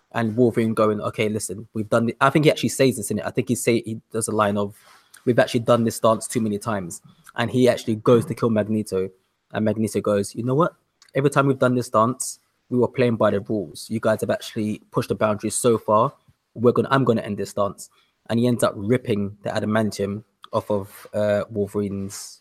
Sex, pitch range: male, 105-130 Hz